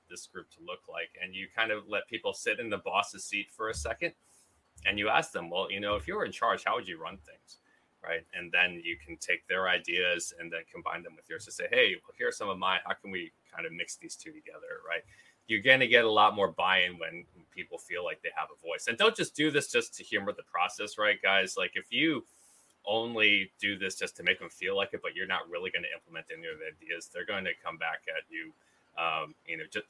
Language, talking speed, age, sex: English, 265 wpm, 30-49, male